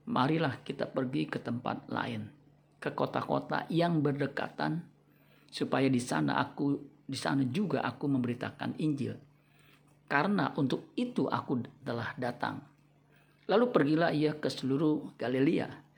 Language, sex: Indonesian, male